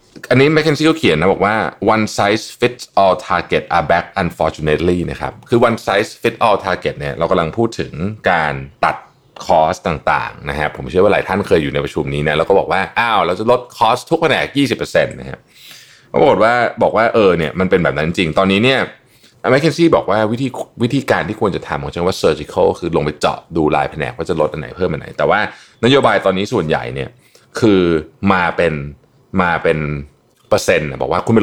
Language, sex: Thai, male